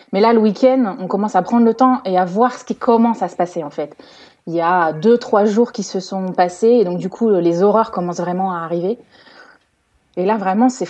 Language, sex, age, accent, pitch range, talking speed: French, female, 20-39, French, 185-235 Hz, 250 wpm